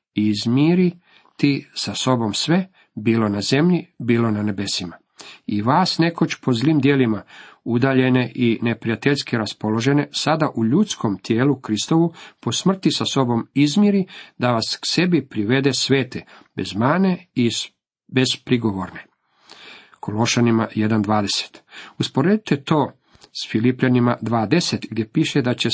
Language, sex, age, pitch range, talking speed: Croatian, male, 50-69, 115-145 Hz, 125 wpm